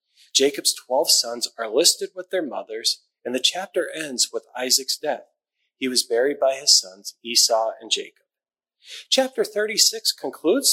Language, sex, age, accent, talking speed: English, male, 40-59, American, 150 wpm